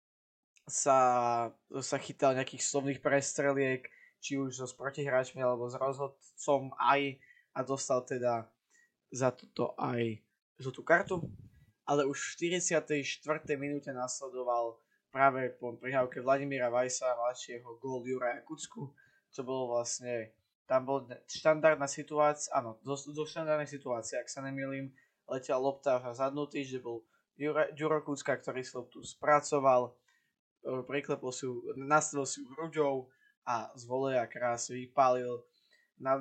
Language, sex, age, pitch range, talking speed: Slovak, male, 20-39, 125-145 Hz, 125 wpm